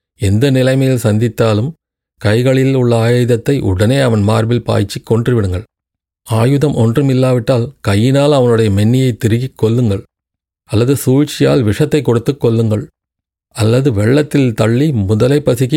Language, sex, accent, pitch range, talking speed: Tamil, male, native, 105-130 Hz, 105 wpm